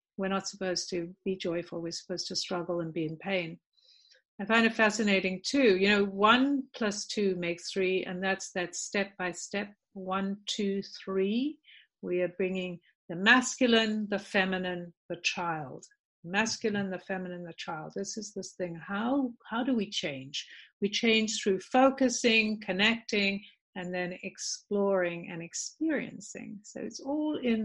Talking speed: 155 wpm